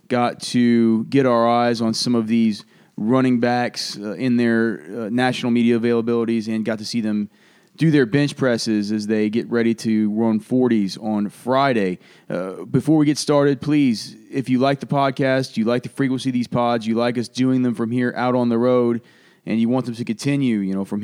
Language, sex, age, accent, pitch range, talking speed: English, male, 30-49, American, 110-130 Hz, 210 wpm